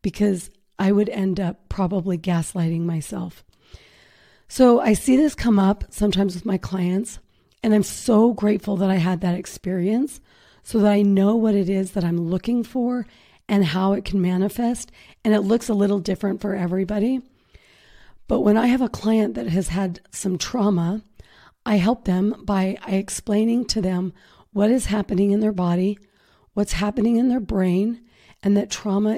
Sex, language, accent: female, English, American